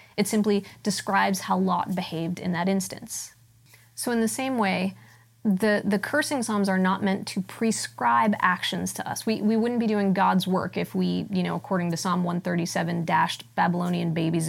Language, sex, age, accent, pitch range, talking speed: English, female, 30-49, American, 145-215 Hz, 180 wpm